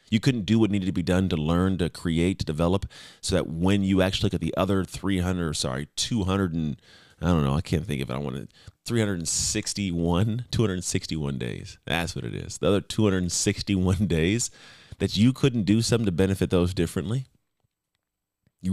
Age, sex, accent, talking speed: 30-49, male, American, 190 wpm